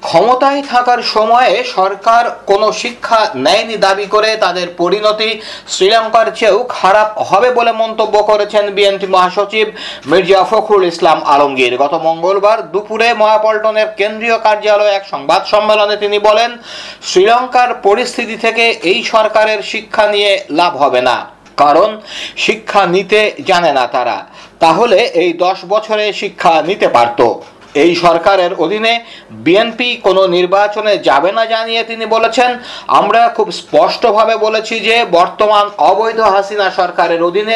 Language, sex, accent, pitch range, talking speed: Bengali, male, native, 195-230 Hz, 90 wpm